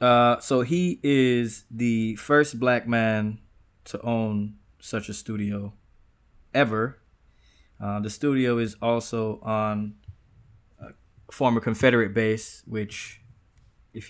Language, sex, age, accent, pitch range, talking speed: English, male, 20-39, American, 100-115 Hz, 110 wpm